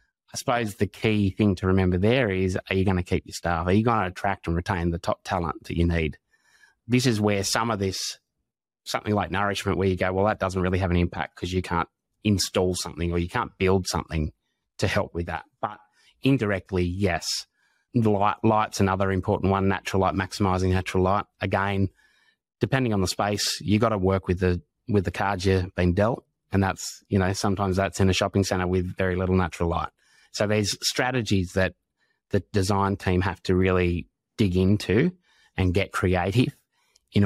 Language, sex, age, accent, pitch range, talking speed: English, male, 20-39, Australian, 90-105 Hz, 200 wpm